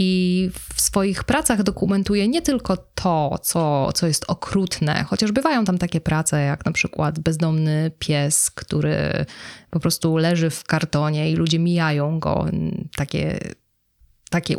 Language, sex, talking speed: Polish, female, 140 wpm